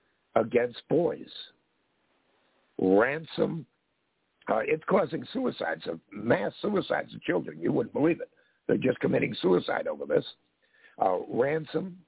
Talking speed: 115 wpm